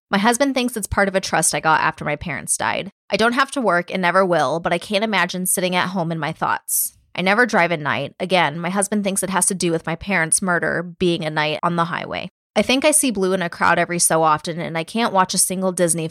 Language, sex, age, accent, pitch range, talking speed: English, female, 20-39, American, 165-195 Hz, 270 wpm